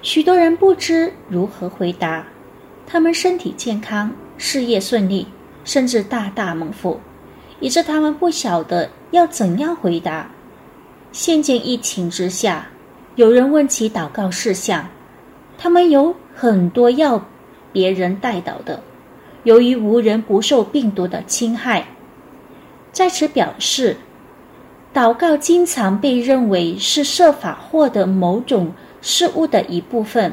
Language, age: Indonesian, 30-49